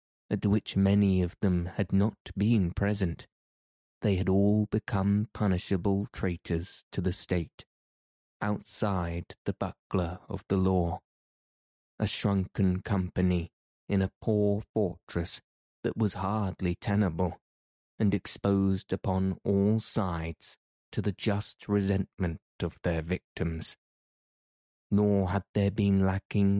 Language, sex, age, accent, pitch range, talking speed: English, male, 20-39, British, 90-105 Hz, 115 wpm